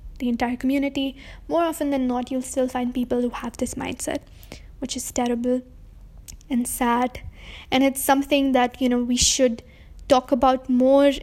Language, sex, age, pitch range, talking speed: English, female, 20-39, 250-285 Hz, 165 wpm